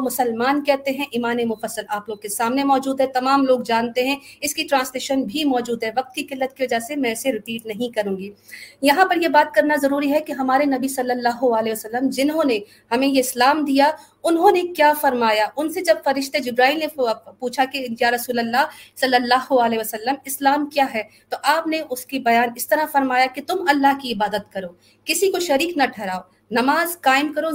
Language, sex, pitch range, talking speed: Urdu, female, 245-295 Hz, 210 wpm